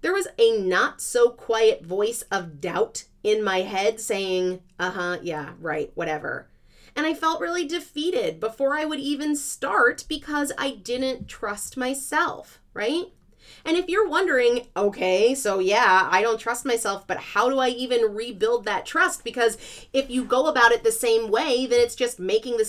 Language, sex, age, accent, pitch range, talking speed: English, female, 30-49, American, 205-305 Hz, 170 wpm